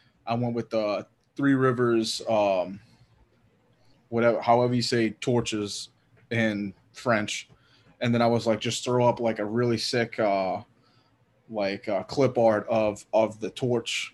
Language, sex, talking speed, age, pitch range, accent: English, male, 150 wpm, 20-39, 110-125 Hz, American